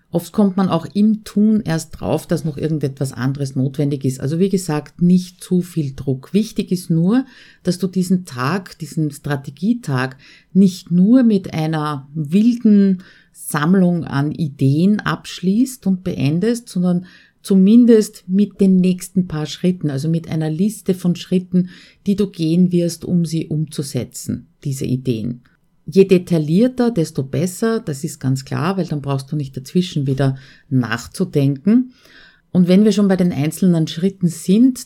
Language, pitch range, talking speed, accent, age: German, 145-195 Hz, 150 wpm, Austrian, 50-69